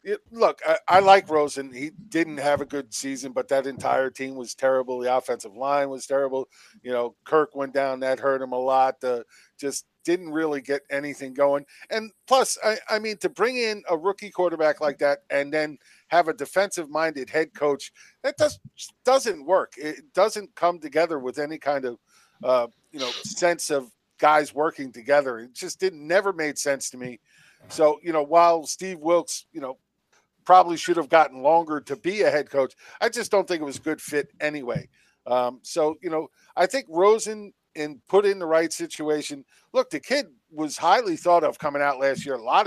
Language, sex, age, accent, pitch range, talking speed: English, male, 50-69, American, 140-185 Hz, 195 wpm